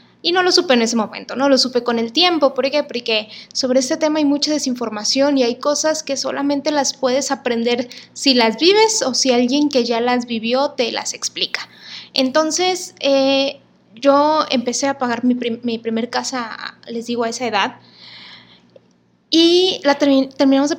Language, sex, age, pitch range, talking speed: Spanish, female, 20-39, 235-280 Hz, 180 wpm